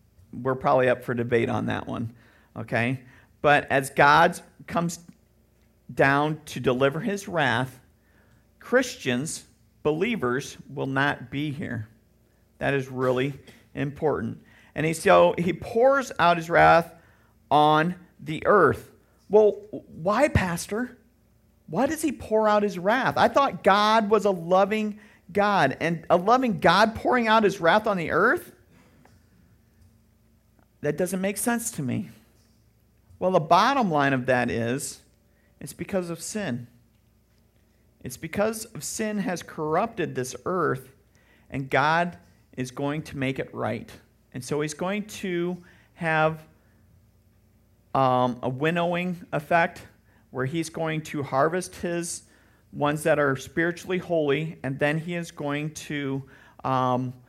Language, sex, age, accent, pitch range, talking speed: English, male, 50-69, American, 120-175 Hz, 135 wpm